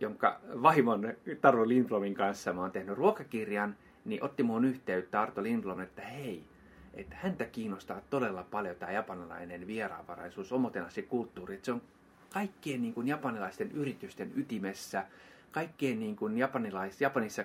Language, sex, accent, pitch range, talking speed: Finnish, male, native, 95-140 Hz, 125 wpm